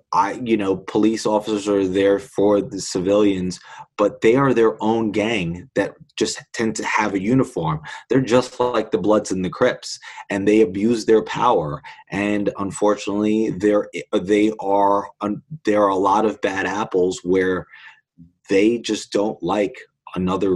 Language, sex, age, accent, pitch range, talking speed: English, male, 20-39, American, 95-105 Hz, 160 wpm